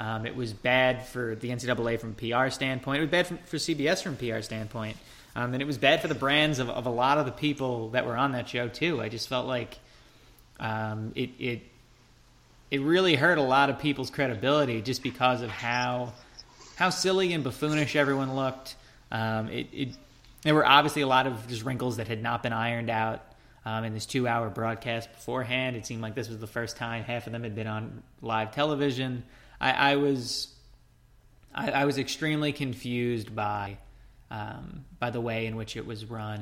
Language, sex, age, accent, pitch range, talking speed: English, male, 20-39, American, 115-135 Hz, 205 wpm